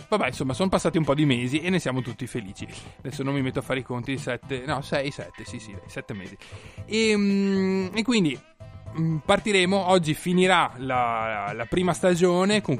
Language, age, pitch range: Italian, 20-39, 130-165 Hz